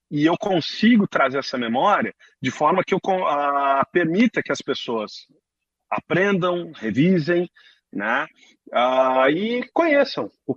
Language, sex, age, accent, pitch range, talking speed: Portuguese, male, 40-59, Brazilian, 160-220 Hz, 125 wpm